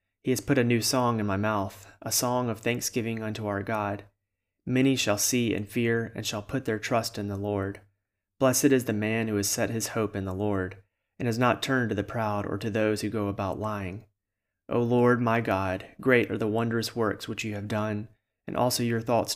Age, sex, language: 30-49, male, English